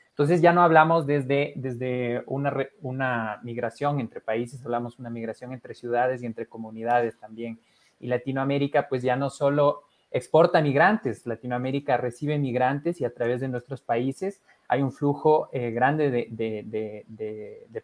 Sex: male